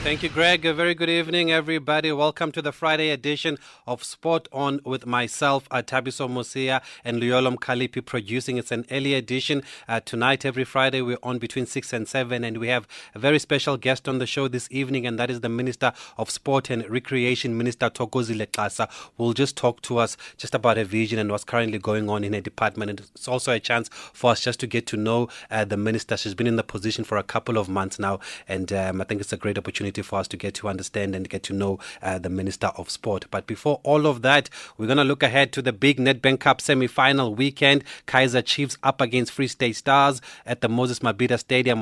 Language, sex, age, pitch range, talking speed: English, male, 30-49, 110-135 Hz, 225 wpm